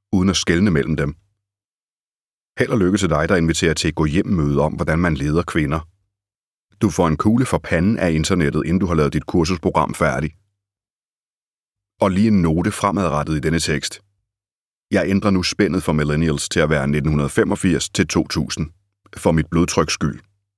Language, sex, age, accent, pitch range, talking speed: Danish, male, 30-49, native, 85-100 Hz, 175 wpm